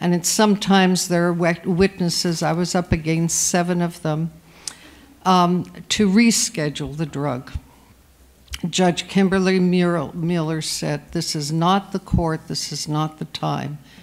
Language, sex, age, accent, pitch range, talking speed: English, female, 60-79, American, 165-200 Hz, 135 wpm